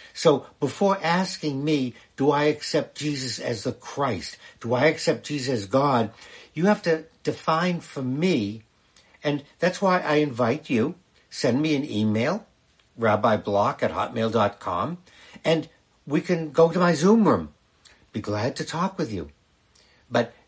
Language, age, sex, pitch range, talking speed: English, 60-79, male, 115-175 Hz, 150 wpm